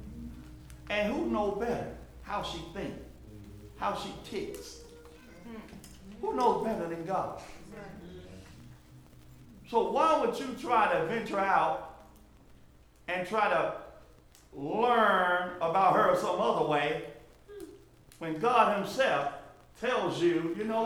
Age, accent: 50-69, American